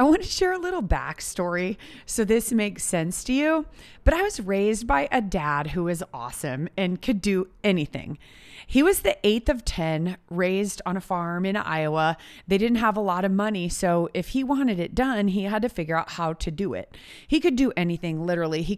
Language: English